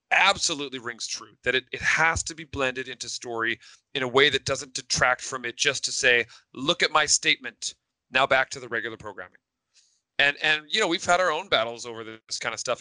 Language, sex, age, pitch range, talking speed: English, male, 30-49, 120-145 Hz, 220 wpm